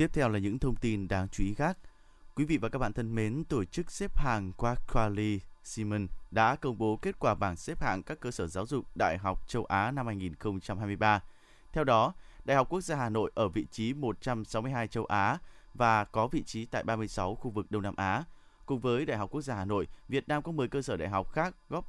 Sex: male